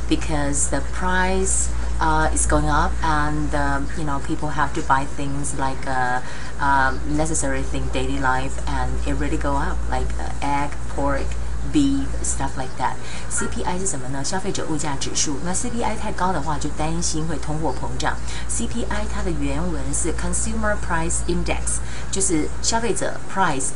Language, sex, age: Chinese, female, 30-49